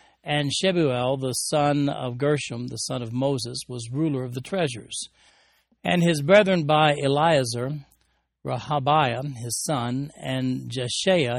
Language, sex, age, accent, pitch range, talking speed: English, male, 60-79, American, 125-150 Hz, 130 wpm